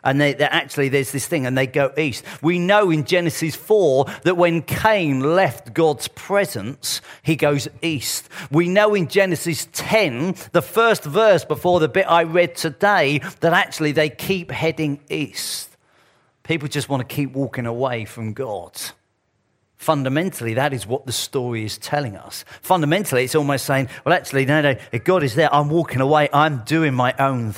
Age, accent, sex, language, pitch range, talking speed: 40-59, British, male, English, 135-190 Hz, 175 wpm